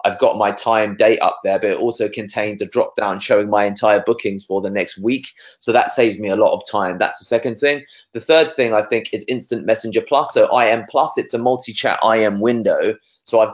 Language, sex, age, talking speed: English, male, 20-39, 240 wpm